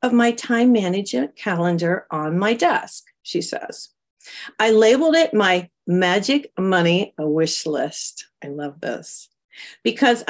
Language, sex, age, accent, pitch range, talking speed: English, female, 40-59, American, 180-245 Hz, 130 wpm